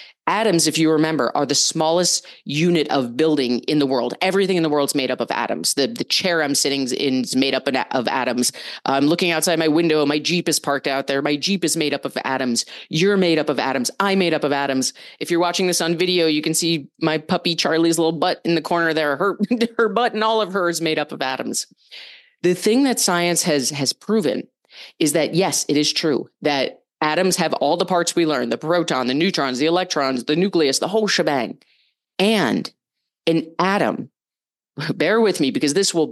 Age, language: 30-49, English